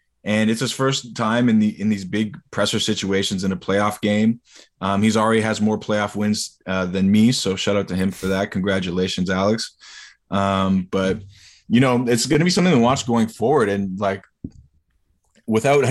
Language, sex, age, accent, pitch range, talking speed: English, male, 20-39, American, 95-115 Hz, 190 wpm